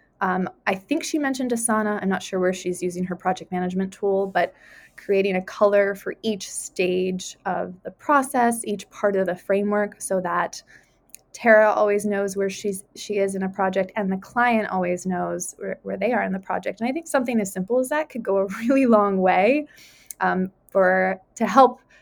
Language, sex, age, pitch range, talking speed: English, female, 20-39, 185-215 Hz, 200 wpm